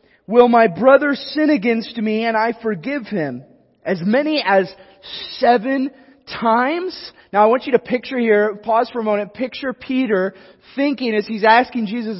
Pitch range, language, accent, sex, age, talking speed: 200-240 Hz, English, American, male, 20-39, 160 wpm